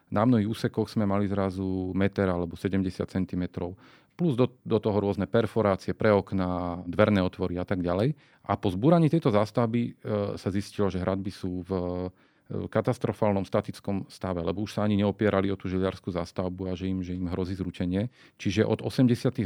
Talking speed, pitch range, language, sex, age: 175 wpm, 95-115 Hz, Slovak, male, 40-59